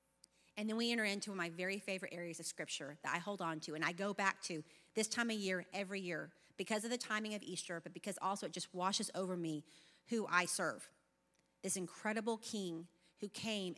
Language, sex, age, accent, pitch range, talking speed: English, female, 40-59, American, 170-205 Hz, 215 wpm